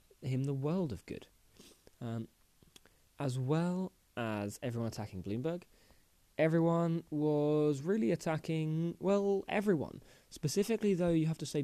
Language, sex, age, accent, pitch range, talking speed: English, male, 20-39, British, 115-150 Hz, 125 wpm